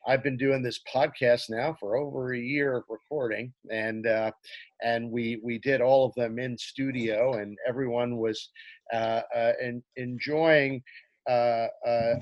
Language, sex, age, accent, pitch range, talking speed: English, male, 50-69, American, 120-165 Hz, 150 wpm